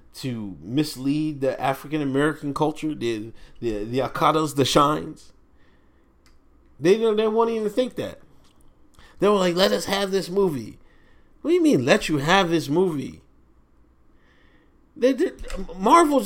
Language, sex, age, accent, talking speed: English, male, 40-59, American, 145 wpm